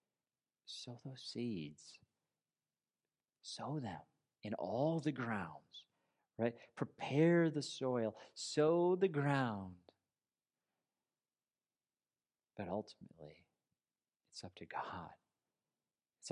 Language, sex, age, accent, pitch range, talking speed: English, male, 40-59, American, 110-145 Hz, 85 wpm